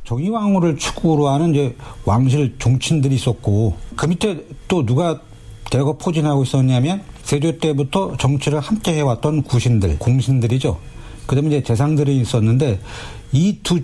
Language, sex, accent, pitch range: Korean, male, native, 115-145 Hz